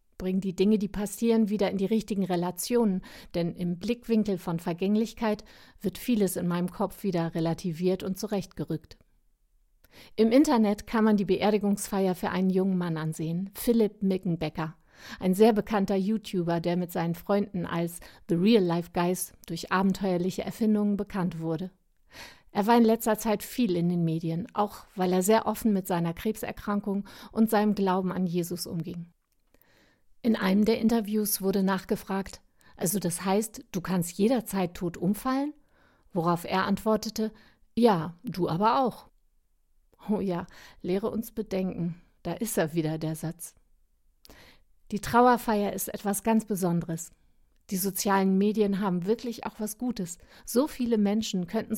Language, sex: German, female